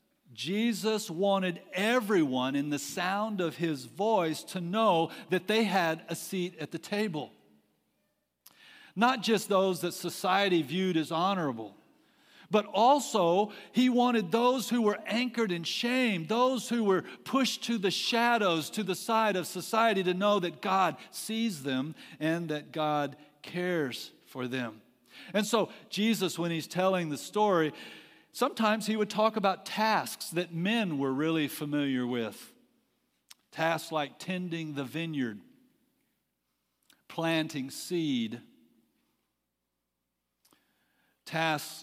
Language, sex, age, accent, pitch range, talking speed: English, male, 50-69, American, 150-215 Hz, 130 wpm